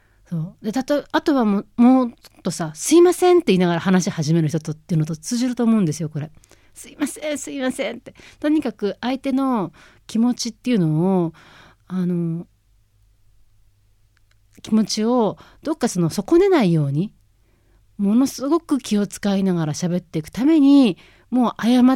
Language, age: Japanese, 40-59